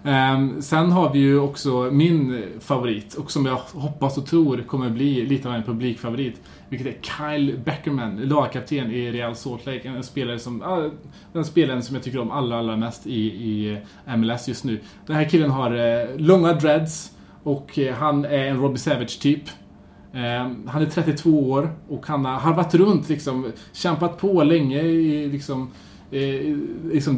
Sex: male